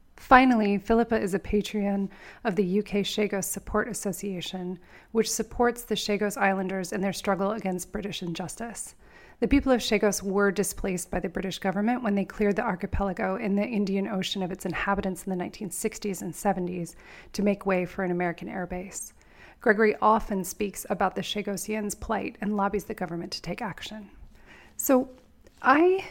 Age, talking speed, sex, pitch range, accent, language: 30-49, 170 wpm, female, 185-215 Hz, American, English